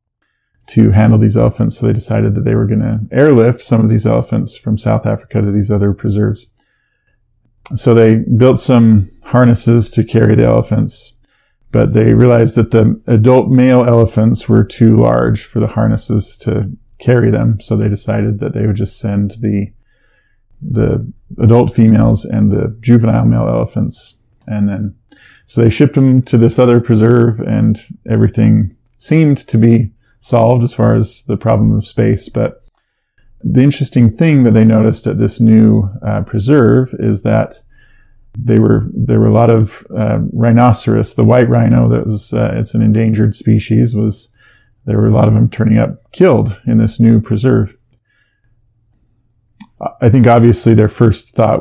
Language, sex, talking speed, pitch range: English, male, 165 wpm, 110-120 Hz